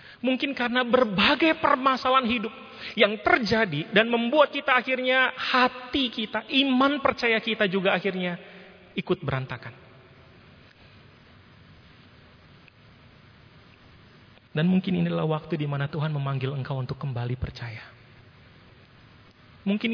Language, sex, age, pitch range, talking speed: Indonesian, male, 30-49, 150-240 Hz, 100 wpm